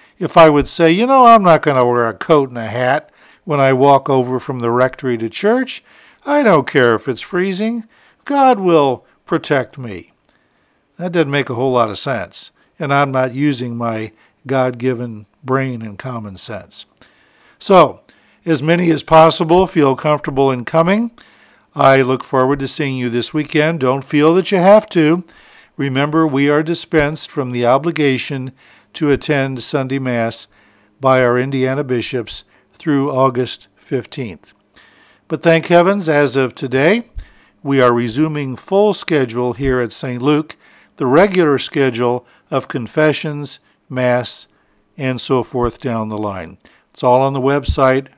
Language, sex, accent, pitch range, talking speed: English, male, American, 125-160 Hz, 155 wpm